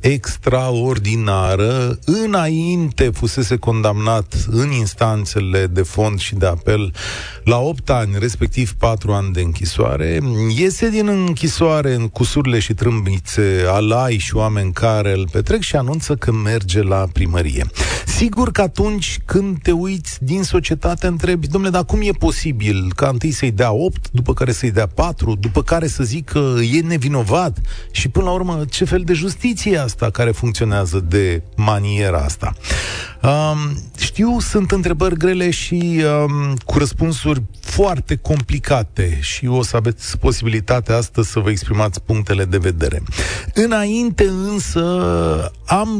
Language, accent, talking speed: Romanian, native, 140 wpm